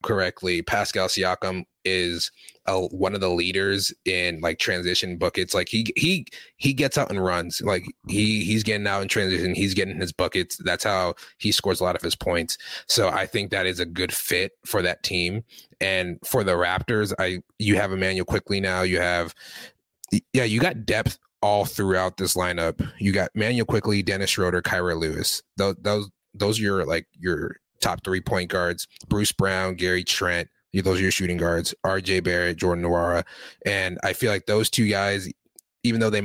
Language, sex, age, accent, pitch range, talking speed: English, male, 30-49, American, 90-105 Hz, 185 wpm